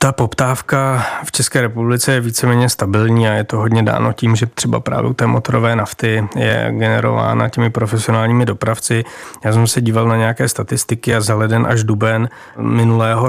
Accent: native